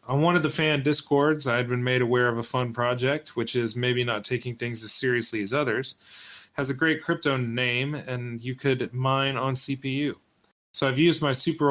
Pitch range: 120-140 Hz